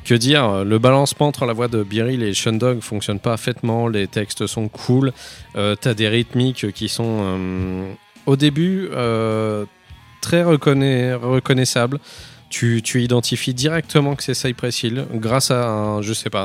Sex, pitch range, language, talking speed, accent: male, 100-125 Hz, French, 165 wpm, French